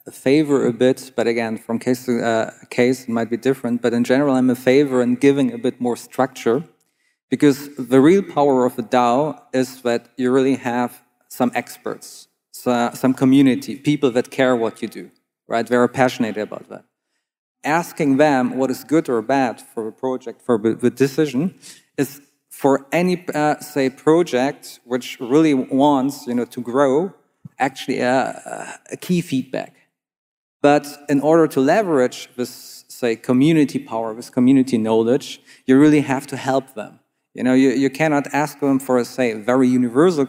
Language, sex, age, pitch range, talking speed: English, male, 40-59, 120-140 Hz, 175 wpm